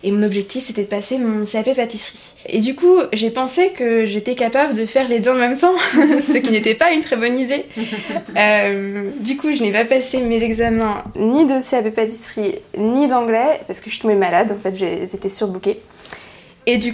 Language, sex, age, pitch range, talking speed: French, female, 20-39, 200-240 Hz, 210 wpm